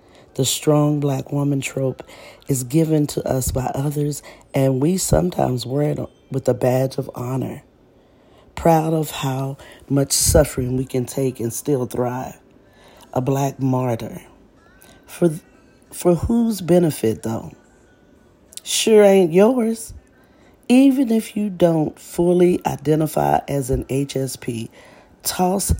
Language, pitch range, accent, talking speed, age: English, 125-150 Hz, American, 125 wpm, 40-59